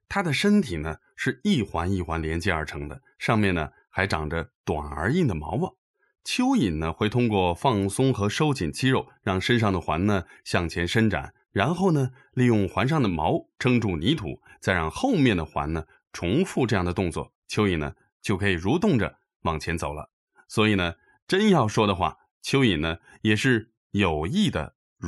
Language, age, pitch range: English, 20-39, 80-130 Hz